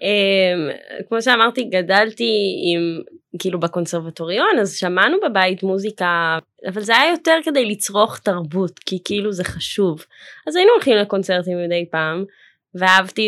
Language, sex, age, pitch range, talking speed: Hebrew, female, 20-39, 170-205 Hz, 130 wpm